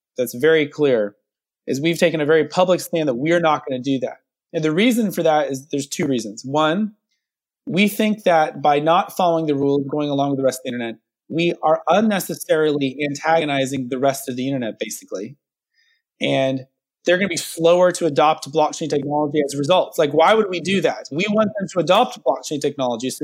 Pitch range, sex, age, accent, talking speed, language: 140-175 Hz, male, 30-49, American, 205 wpm, English